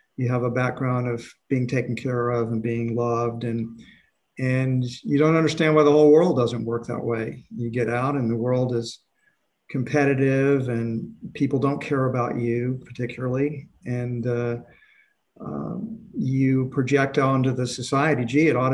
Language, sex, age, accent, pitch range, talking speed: English, male, 50-69, American, 120-145 Hz, 165 wpm